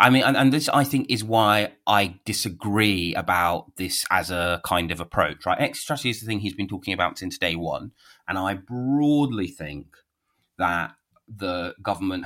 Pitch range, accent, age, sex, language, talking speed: 85-115 Hz, British, 30-49, male, English, 180 wpm